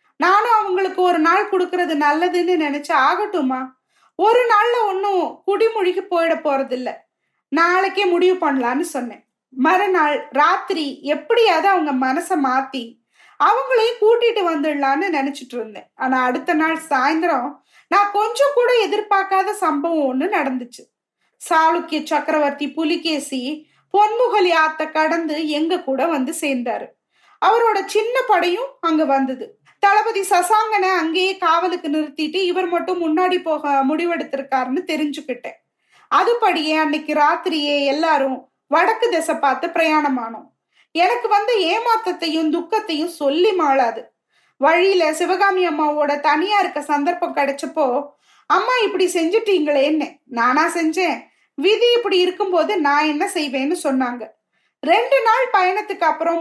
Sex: female